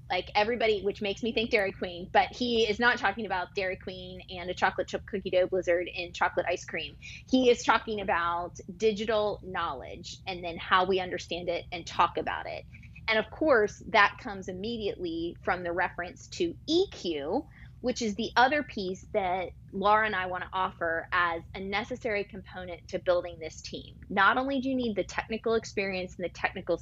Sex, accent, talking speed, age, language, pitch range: female, American, 190 wpm, 20-39, English, 180-230 Hz